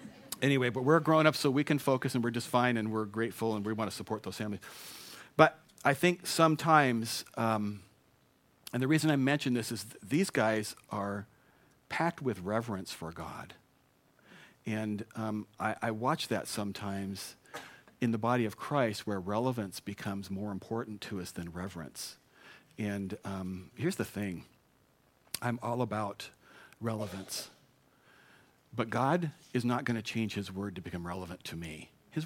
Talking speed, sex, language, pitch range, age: 160 wpm, male, English, 100-125 Hz, 50-69